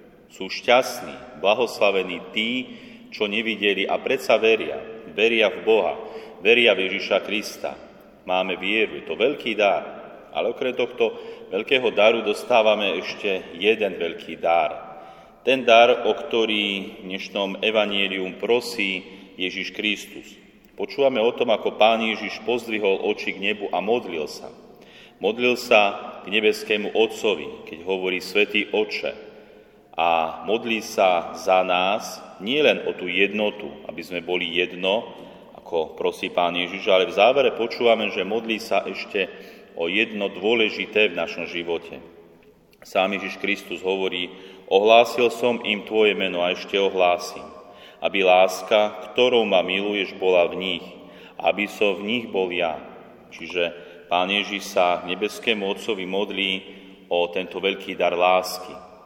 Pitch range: 90-115 Hz